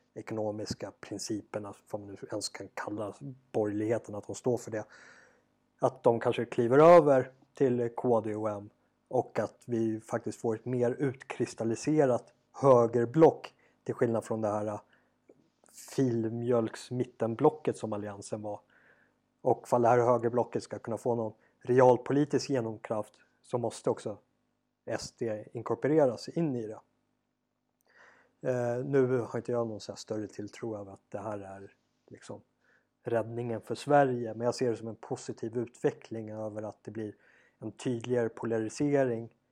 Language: Swedish